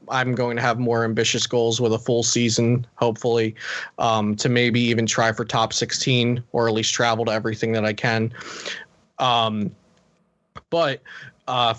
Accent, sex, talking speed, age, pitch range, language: American, male, 165 wpm, 20-39, 120-145 Hz, English